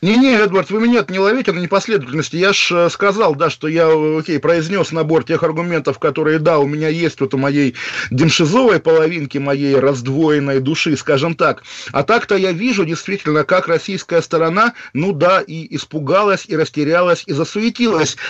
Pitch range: 150-190 Hz